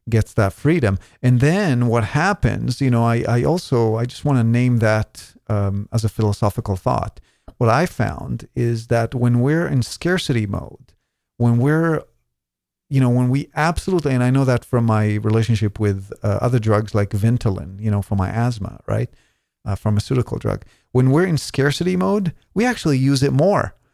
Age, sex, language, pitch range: 40-59, male, English, 110-150 Hz